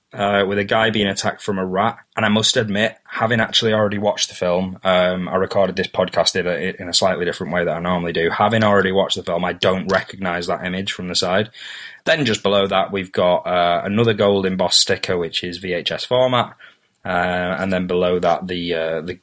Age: 20-39